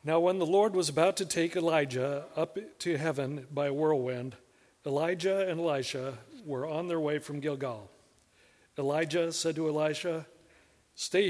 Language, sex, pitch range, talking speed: English, male, 130-165 Hz, 155 wpm